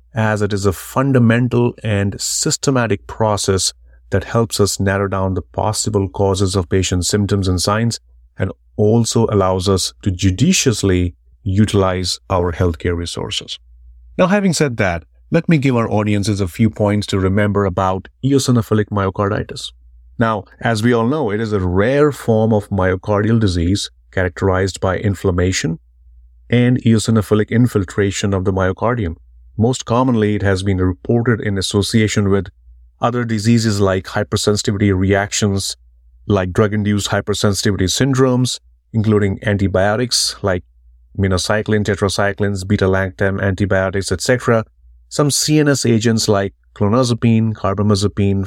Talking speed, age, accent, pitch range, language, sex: 130 wpm, 30-49, Indian, 95-110 Hz, English, male